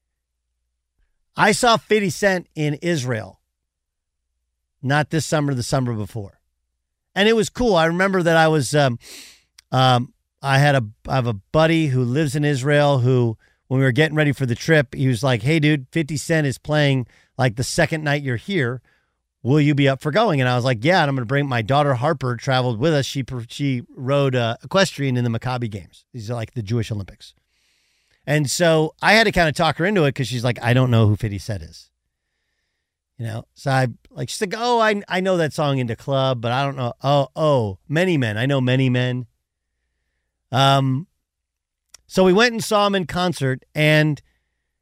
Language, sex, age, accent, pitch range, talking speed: English, male, 50-69, American, 115-160 Hz, 205 wpm